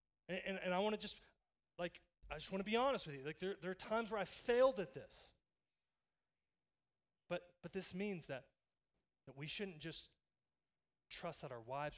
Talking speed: 195 wpm